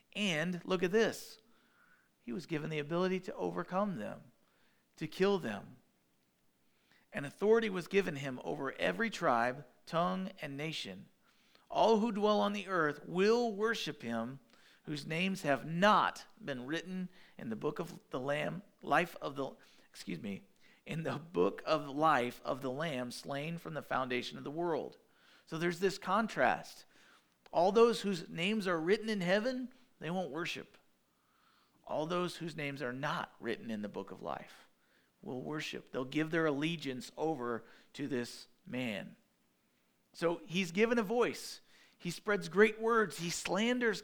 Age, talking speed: 50-69, 155 wpm